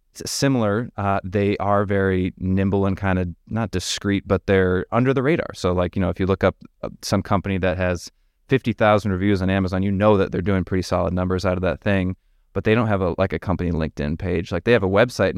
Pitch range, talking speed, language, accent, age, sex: 90-100 Hz, 230 wpm, English, American, 20-39, male